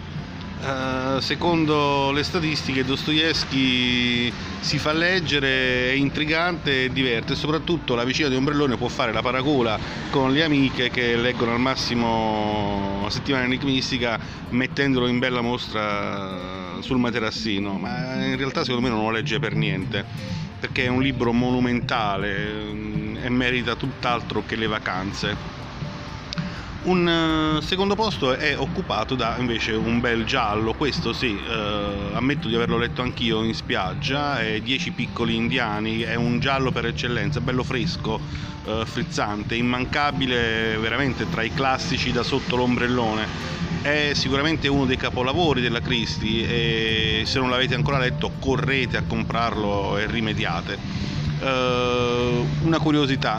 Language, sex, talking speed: Italian, male, 135 wpm